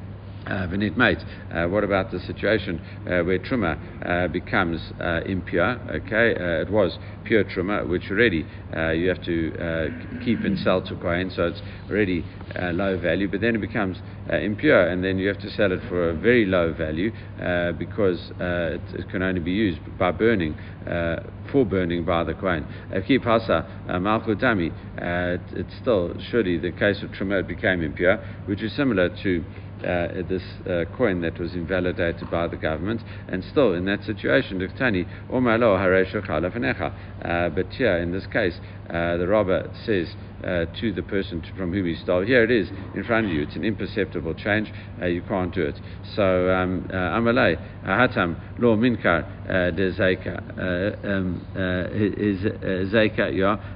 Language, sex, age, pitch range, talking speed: English, male, 60-79, 90-100 Hz, 155 wpm